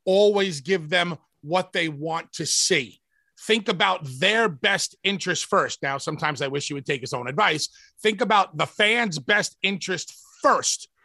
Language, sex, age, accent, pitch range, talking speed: English, male, 30-49, American, 165-220 Hz, 170 wpm